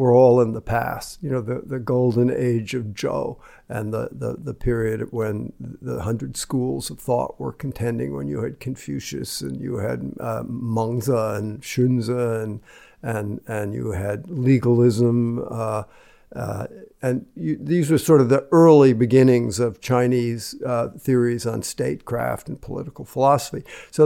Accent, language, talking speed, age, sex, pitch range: American, English, 150 wpm, 60-79, male, 120-140 Hz